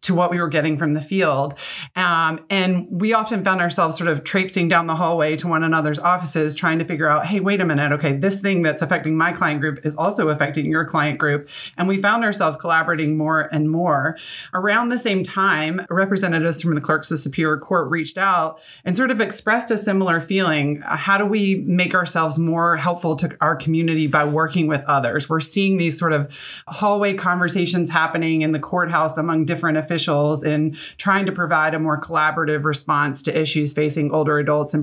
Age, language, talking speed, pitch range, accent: 30-49, English, 200 wpm, 155-180 Hz, American